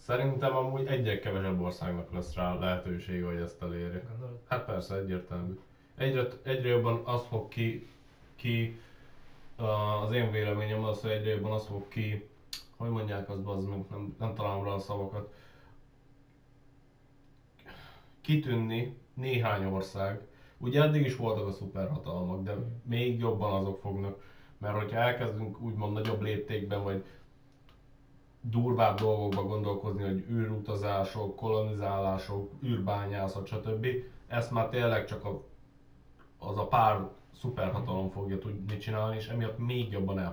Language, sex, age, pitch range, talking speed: Hungarian, male, 30-49, 100-125 Hz, 130 wpm